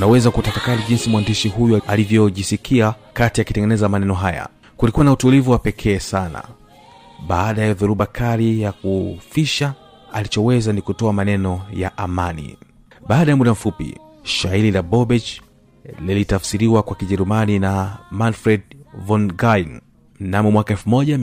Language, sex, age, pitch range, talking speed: Swahili, male, 30-49, 100-120 Hz, 120 wpm